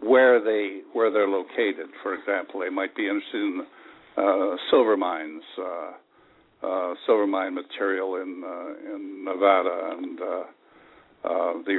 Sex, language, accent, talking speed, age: male, English, American, 145 wpm, 60-79